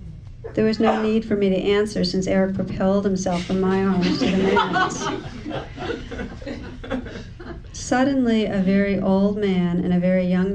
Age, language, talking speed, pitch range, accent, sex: 50-69, English, 155 wpm, 175-195 Hz, American, female